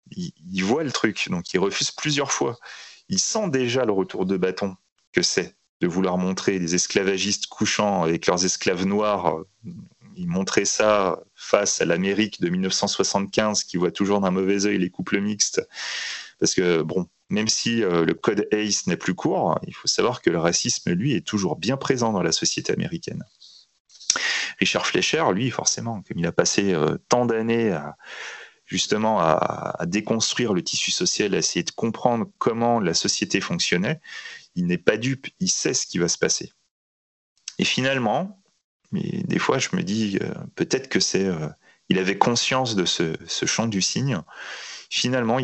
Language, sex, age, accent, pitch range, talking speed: French, male, 30-49, French, 95-130 Hz, 170 wpm